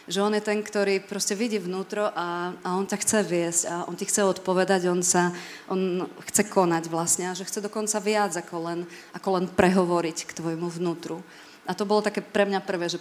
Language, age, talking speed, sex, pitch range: Slovak, 30-49, 210 wpm, female, 170-190 Hz